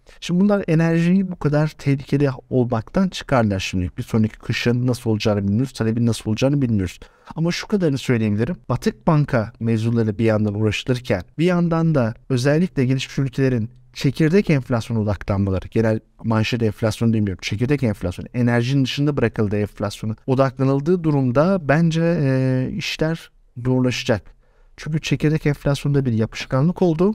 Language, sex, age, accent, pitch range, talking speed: Turkish, male, 50-69, native, 115-145 Hz, 135 wpm